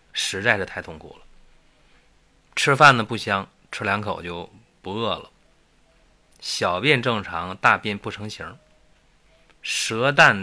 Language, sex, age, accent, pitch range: Chinese, male, 20-39, native, 95-135 Hz